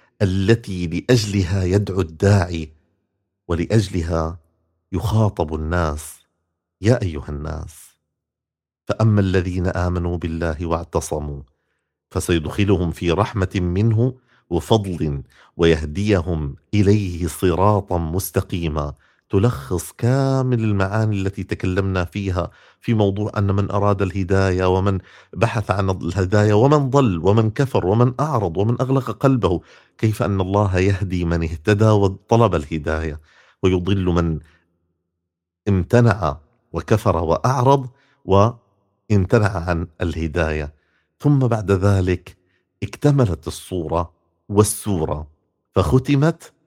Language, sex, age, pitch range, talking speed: Arabic, male, 50-69, 85-105 Hz, 95 wpm